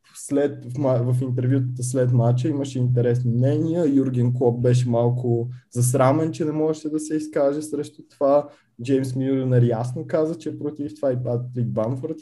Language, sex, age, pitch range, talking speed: Bulgarian, male, 20-39, 120-140 Hz, 155 wpm